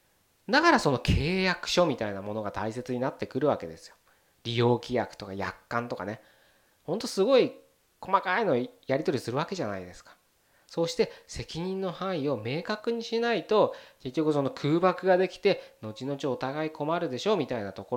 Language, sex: Japanese, male